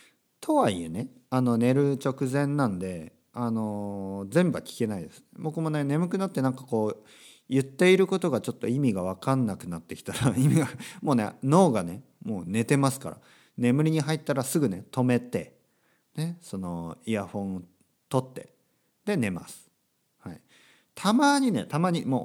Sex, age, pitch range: male, 40-59, 110-170 Hz